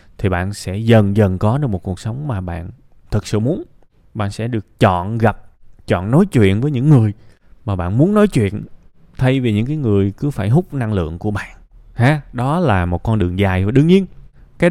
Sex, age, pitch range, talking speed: male, 20-39, 95-125 Hz, 220 wpm